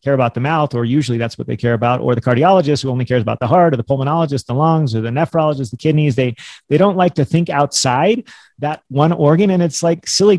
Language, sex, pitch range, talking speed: English, male, 125-160 Hz, 255 wpm